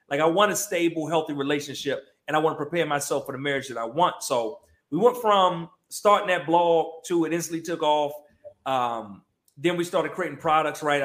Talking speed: 200 wpm